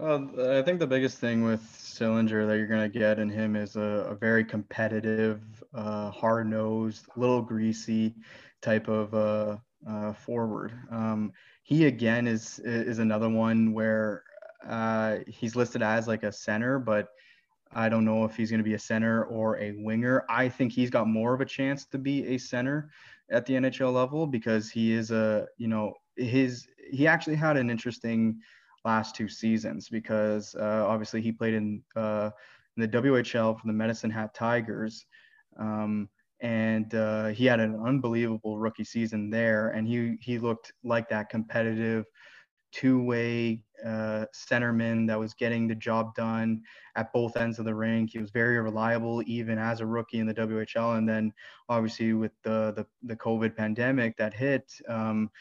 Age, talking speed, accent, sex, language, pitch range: 20-39, 170 wpm, American, male, English, 110-120 Hz